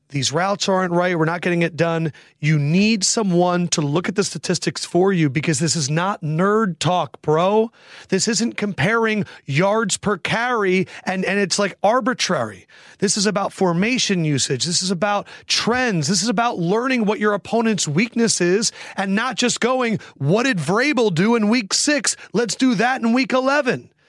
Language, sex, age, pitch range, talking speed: English, male, 30-49, 175-235 Hz, 180 wpm